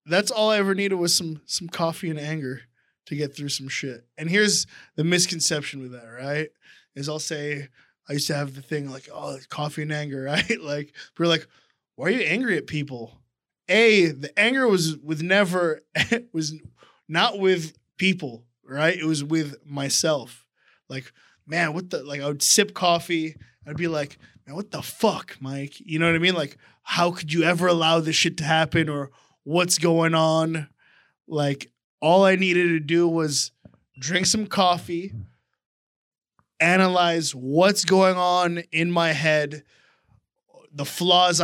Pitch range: 145-170 Hz